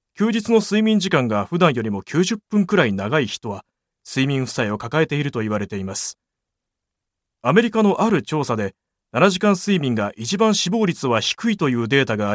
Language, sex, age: Japanese, male, 30-49